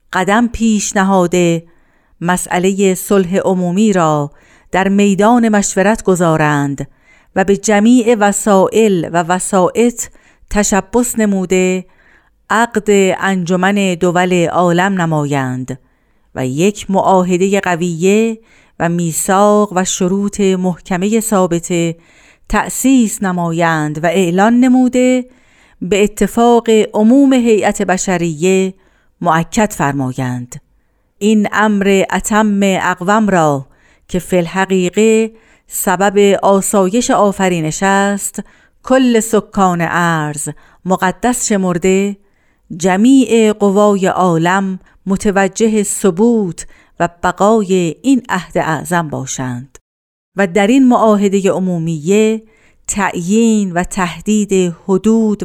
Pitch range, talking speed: 175-210 Hz, 90 wpm